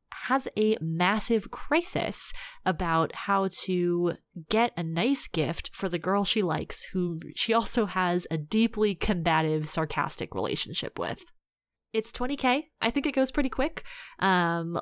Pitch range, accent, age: 170-250 Hz, American, 20-39